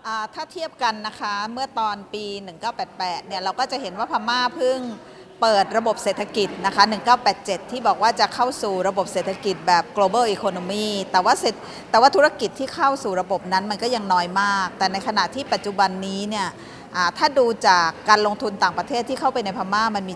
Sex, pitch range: female, 190-235 Hz